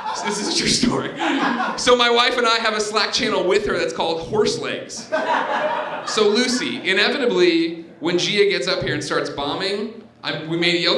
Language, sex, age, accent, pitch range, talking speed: English, male, 30-49, American, 175-285 Hz, 190 wpm